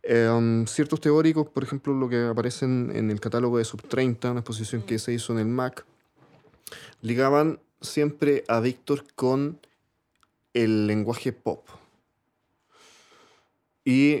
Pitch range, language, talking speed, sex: 115-150 Hz, Spanish, 135 wpm, male